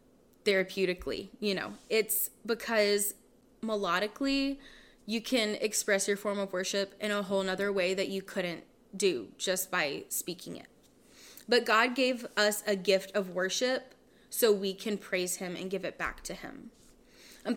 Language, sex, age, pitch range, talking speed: English, female, 20-39, 190-235 Hz, 155 wpm